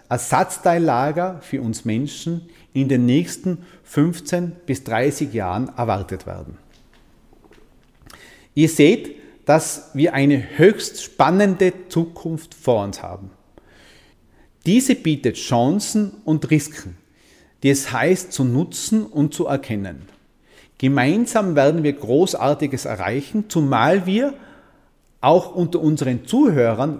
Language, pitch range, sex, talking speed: German, 120-180 Hz, male, 105 wpm